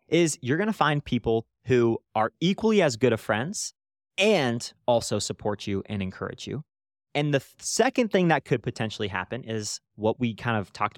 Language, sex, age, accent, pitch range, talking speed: English, male, 30-49, American, 115-175 Hz, 180 wpm